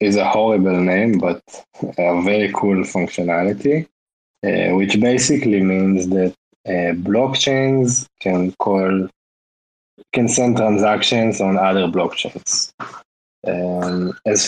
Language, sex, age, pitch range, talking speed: English, male, 20-39, 95-110 Hz, 110 wpm